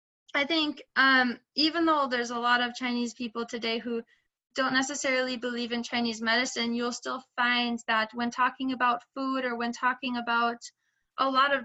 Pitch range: 235-255 Hz